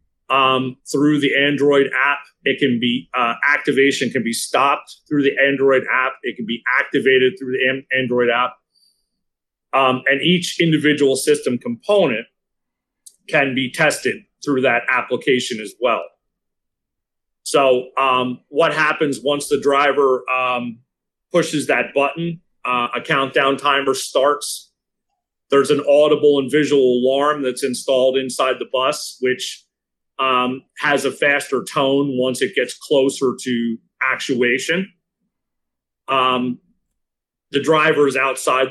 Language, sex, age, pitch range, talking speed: English, male, 40-59, 130-150 Hz, 130 wpm